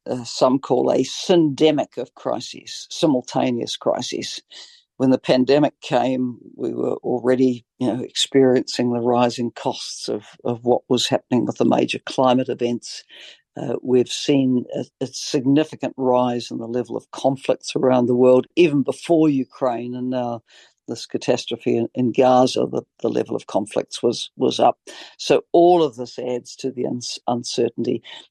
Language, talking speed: English, 155 wpm